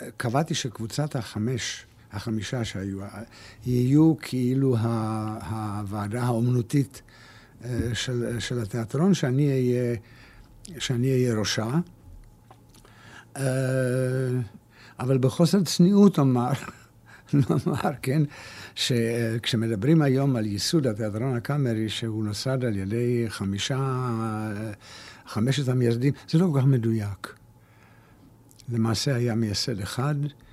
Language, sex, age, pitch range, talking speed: Hebrew, male, 60-79, 110-135 Hz, 90 wpm